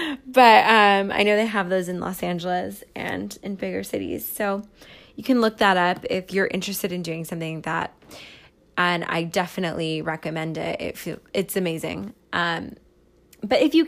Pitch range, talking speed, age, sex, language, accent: 180-225 Hz, 170 wpm, 20-39, female, English, American